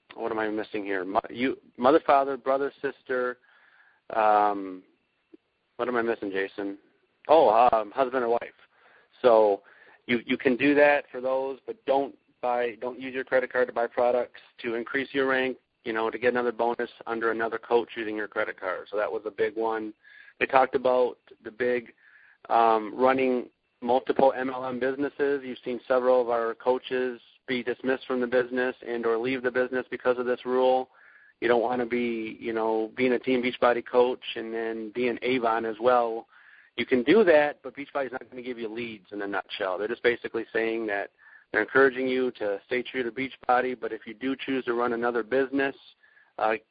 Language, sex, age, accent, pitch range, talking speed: English, male, 40-59, American, 115-130 Hz, 195 wpm